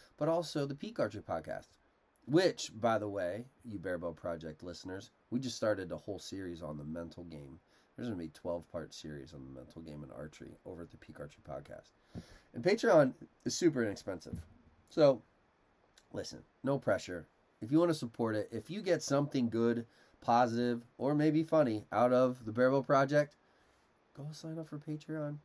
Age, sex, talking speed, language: 30-49, male, 180 wpm, English